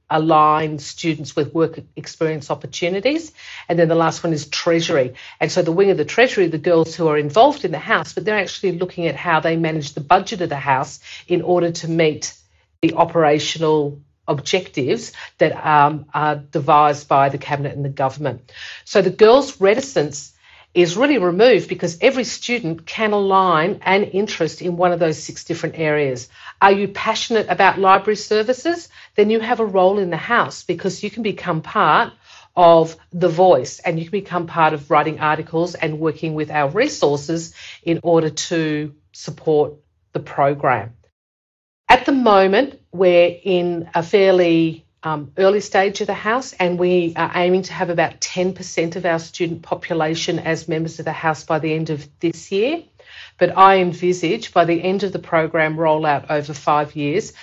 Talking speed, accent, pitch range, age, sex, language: 180 wpm, Australian, 155-185 Hz, 50-69, female, English